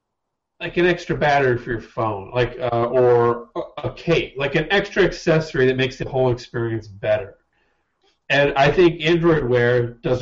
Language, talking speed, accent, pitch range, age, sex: English, 165 wpm, American, 120-160 Hz, 30-49, male